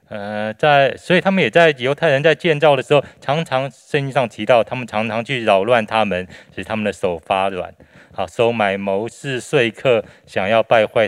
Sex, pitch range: male, 95-125 Hz